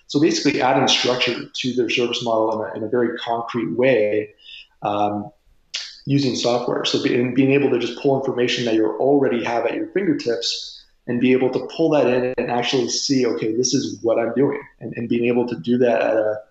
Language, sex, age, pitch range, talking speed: English, male, 20-39, 115-140 Hz, 210 wpm